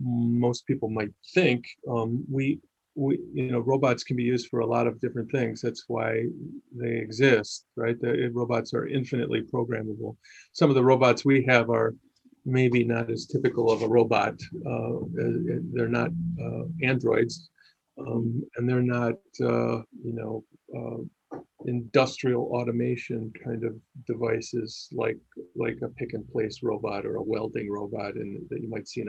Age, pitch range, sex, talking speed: 40-59, 115-130 Hz, male, 160 wpm